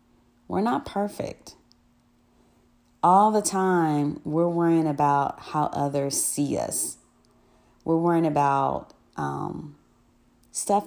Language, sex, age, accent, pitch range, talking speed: English, female, 40-59, American, 135-175 Hz, 100 wpm